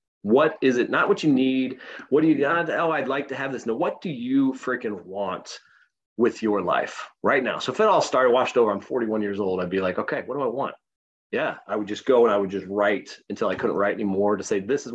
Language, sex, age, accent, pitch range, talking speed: English, male, 30-49, American, 105-140 Hz, 265 wpm